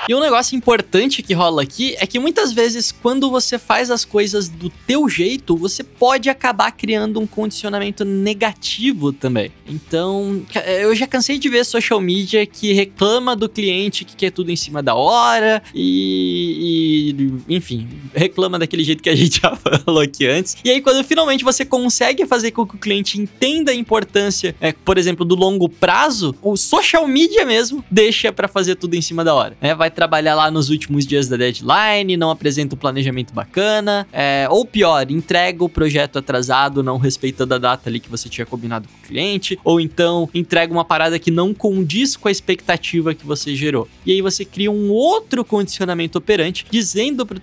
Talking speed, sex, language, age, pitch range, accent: 185 wpm, male, Portuguese, 20-39, 165-225 Hz, Brazilian